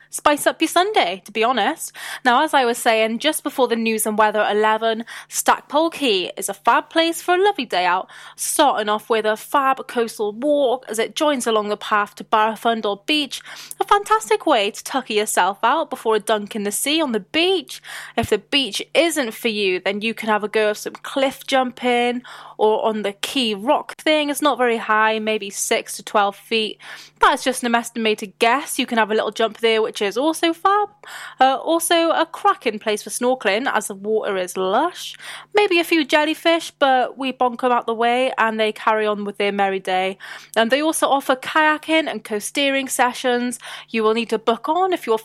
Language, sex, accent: English, female, British